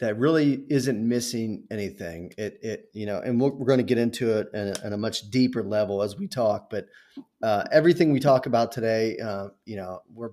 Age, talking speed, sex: 30-49, 220 wpm, male